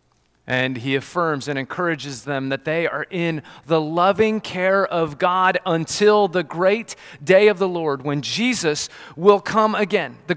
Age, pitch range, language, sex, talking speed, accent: 30-49, 145-195 Hz, English, male, 160 wpm, American